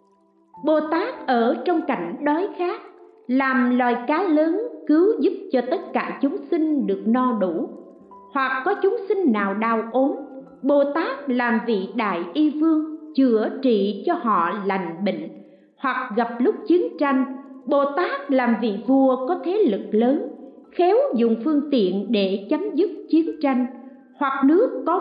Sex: female